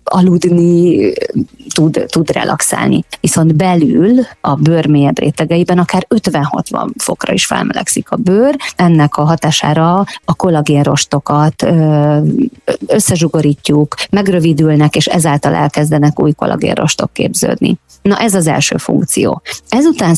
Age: 30-49